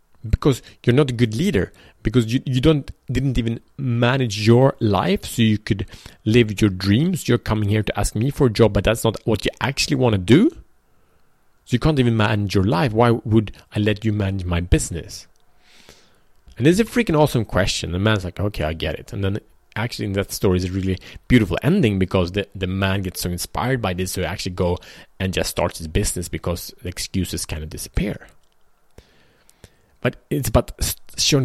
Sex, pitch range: male, 95-125 Hz